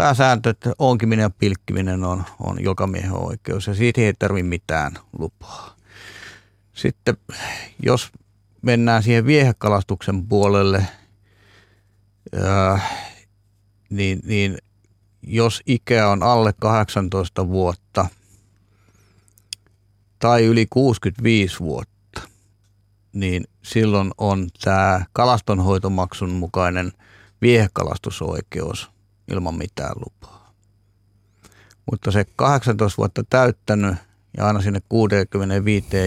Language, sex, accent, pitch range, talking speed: Finnish, male, native, 95-110 Hz, 85 wpm